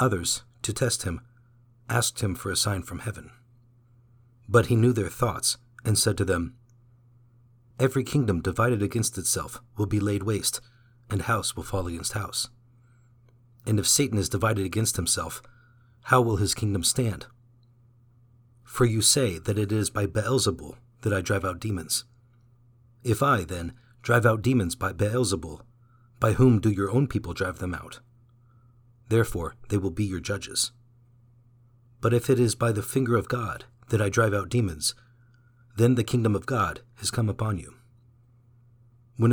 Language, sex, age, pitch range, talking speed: English, male, 40-59, 105-120 Hz, 165 wpm